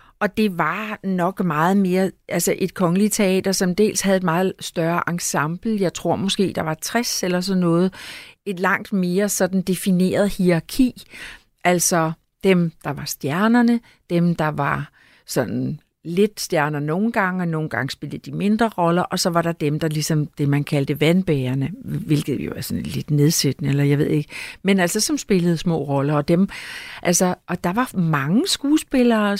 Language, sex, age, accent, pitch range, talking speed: Danish, female, 60-79, native, 155-195 Hz, 180 wpm